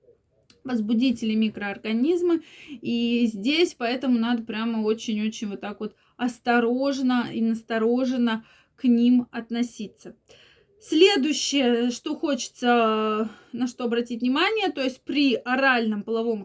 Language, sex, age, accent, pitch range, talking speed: Russian, female, 20-39, native, 230-275 Hz, 105 wpm